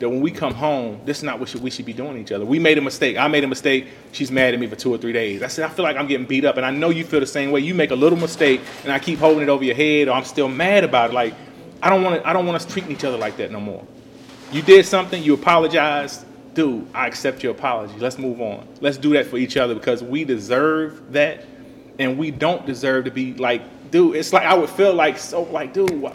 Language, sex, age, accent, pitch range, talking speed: English, male, 30-49, American, 130-170 Hz, 285 wpm